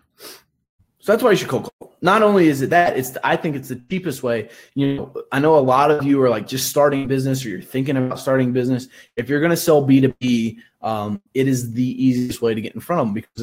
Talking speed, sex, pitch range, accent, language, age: 270 wpm, male, 125-175 Hz, American, English, 20-39